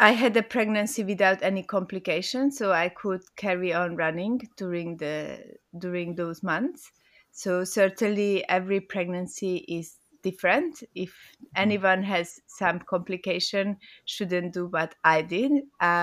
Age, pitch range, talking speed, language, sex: 20-39, 175-195 Hz, 125 wpm, English, female